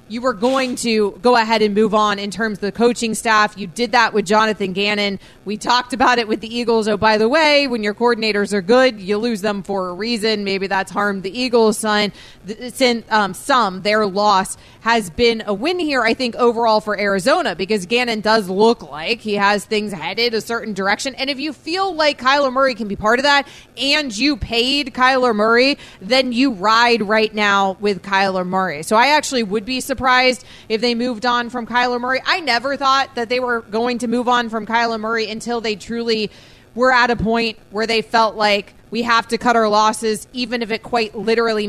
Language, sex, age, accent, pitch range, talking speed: English, female, 30-49, American, 210-250 Hz, 210 wpm